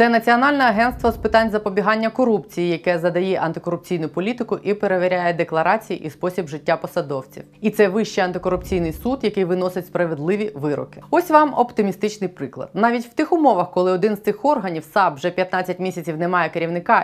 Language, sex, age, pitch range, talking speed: Ukrainian, female, 20-39, 180-235 Hz, 165 wpm